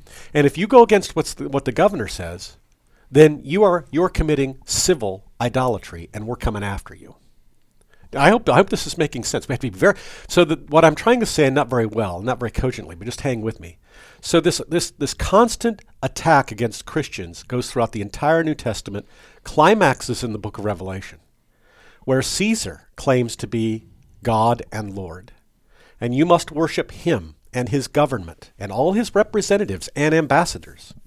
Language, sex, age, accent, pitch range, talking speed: English, male, 50-69, American, 110-160 Hz, 185 wpm